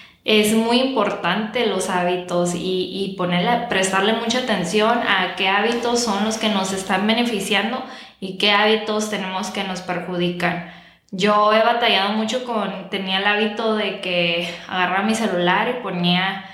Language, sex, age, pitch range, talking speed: Spanish, female, 10-29, 195-225 Hz, 150 wpm